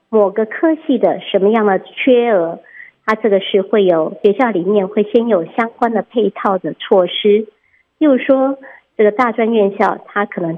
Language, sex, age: Chinese, male, 50-69